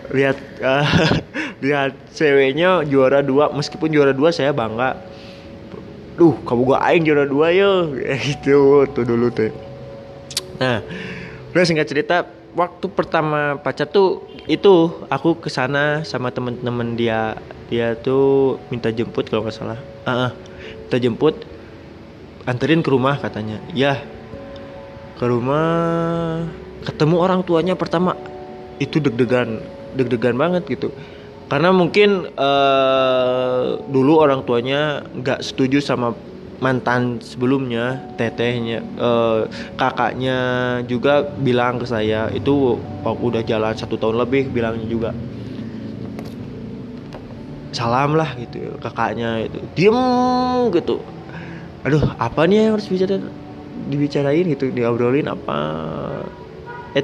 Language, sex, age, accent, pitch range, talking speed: Indonesian, male, 20-39, native, 115-150 Hz, 115 wpm